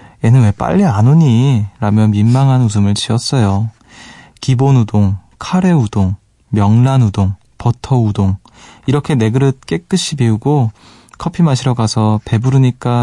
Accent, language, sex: native, Korean, male